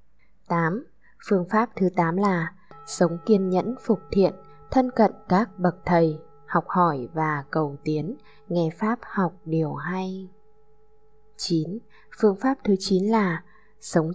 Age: 20-39